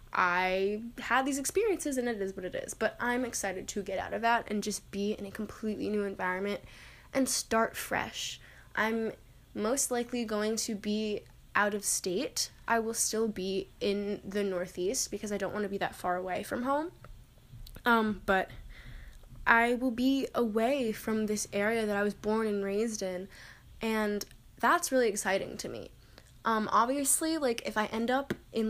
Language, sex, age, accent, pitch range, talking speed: English, female, 10-29, American, 195-240 Hz, 180 wpm